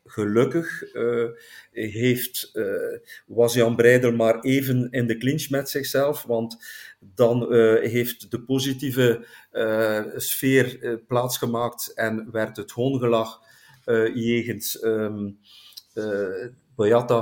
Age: 50-69